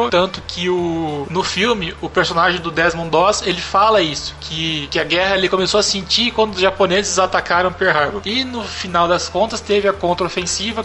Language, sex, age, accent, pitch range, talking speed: Portuguese, male, 20-39, Brazilian, 175-230 Hz, 195 wpm